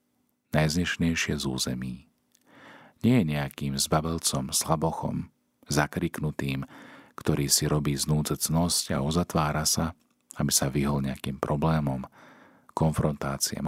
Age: 40-59